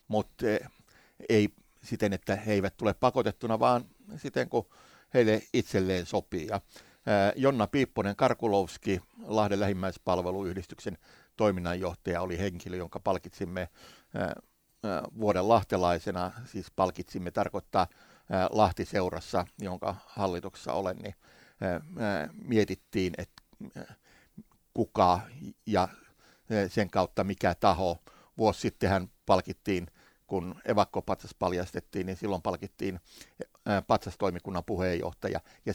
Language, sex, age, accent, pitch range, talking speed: Finnish, male, 60-79, native, 90-105 Hz, 90 wpm